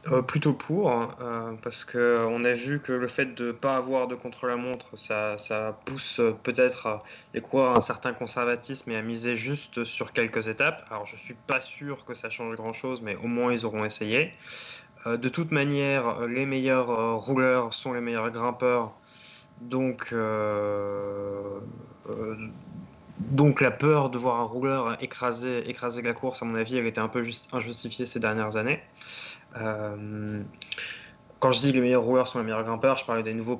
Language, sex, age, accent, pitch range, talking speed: French, male, 20-39, French, 110-130 Hz, 180 wpm